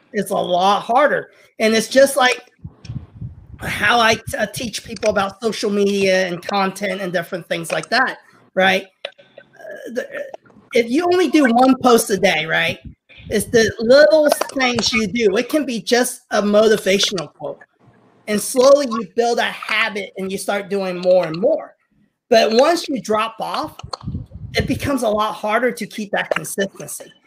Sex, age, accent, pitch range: male, 30-49, American, 200-255 Hz